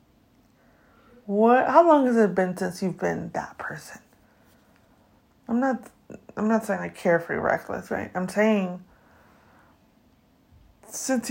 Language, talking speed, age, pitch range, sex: English, 135 wpm, 30-49, 190-230 Hz, female